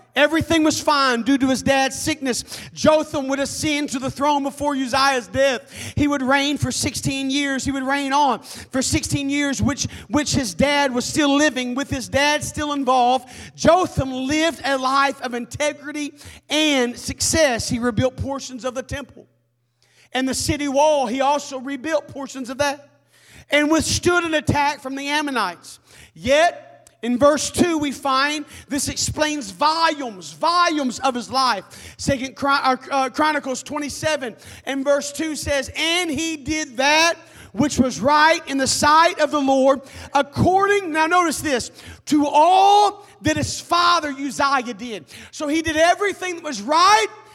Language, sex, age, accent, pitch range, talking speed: English, male, 40-59, American, 255-305 Hz, 160 wpm